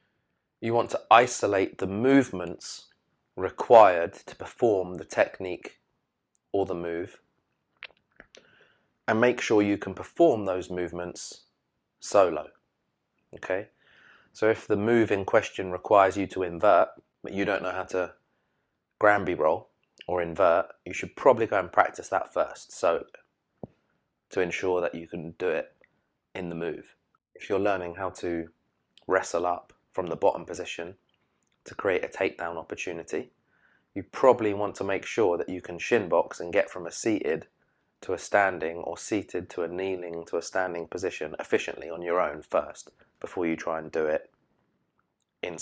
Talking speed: 155 wpm